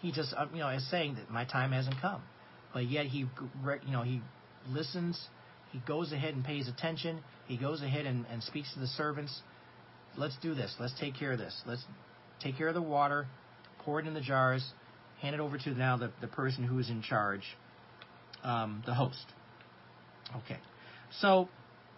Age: 40-59